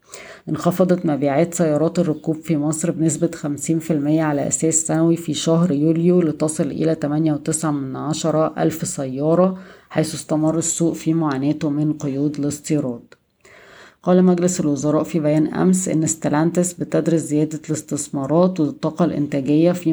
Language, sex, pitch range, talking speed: Arabic, female, 145-165 Hz, 130 wpm